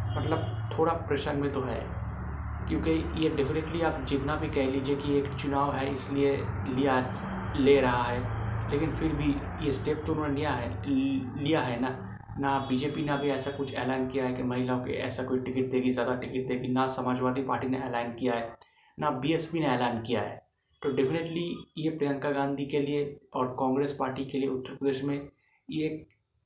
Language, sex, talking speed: Hindi, male, 195 wpm